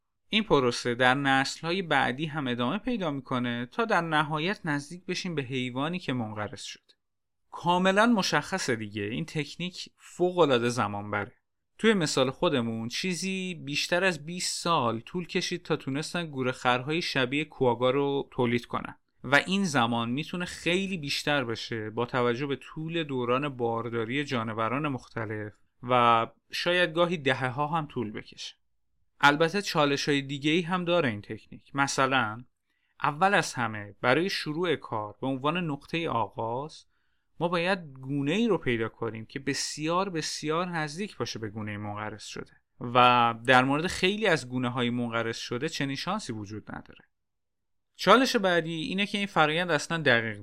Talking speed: 145 wpm